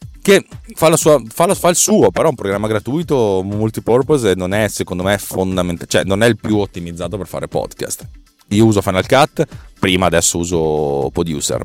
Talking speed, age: 195 wpm, 30-49